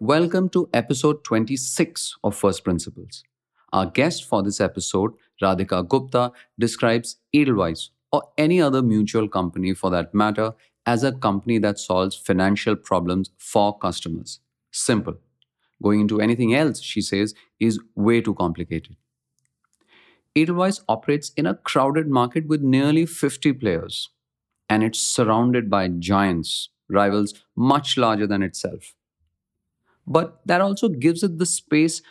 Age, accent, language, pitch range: 30-49, Indian, English, 100-130 Hz